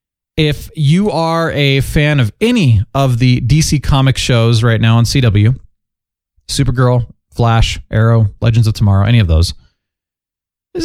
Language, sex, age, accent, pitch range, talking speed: English, male, 30-49, American, 110-155 Hz, 145 wpm